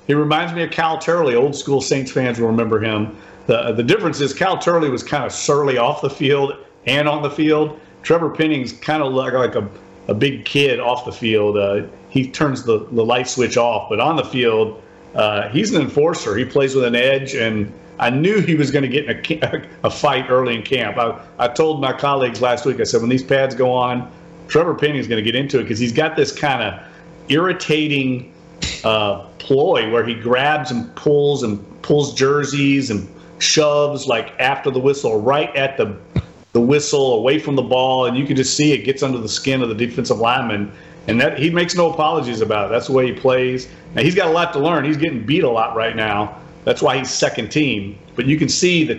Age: 40-59